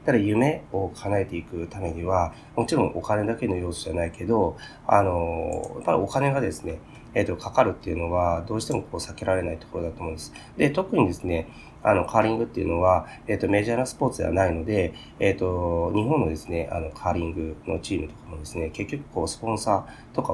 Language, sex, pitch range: Japanese, male, 85-115 Hz